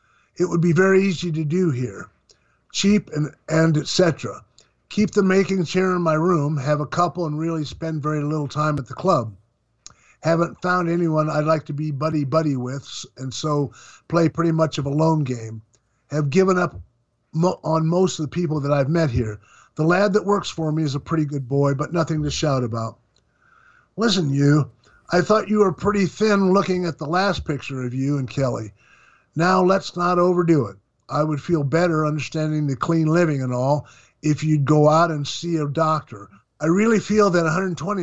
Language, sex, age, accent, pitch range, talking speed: English, male, 50-69, American, 145-175 Hz, 195 wpm